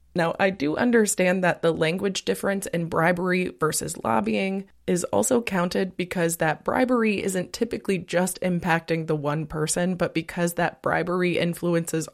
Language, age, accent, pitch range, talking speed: English, 20-39, American, 165-195 Hz, 150 wpm